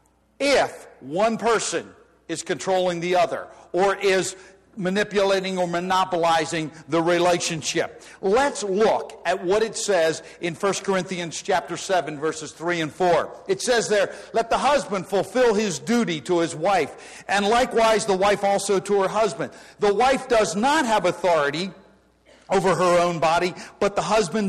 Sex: male